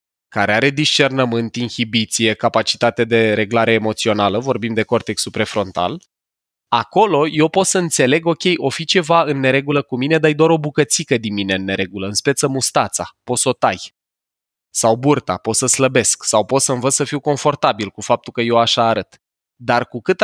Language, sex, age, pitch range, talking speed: Romanian, male, 20-39, 115-150 Hz, 180 wpm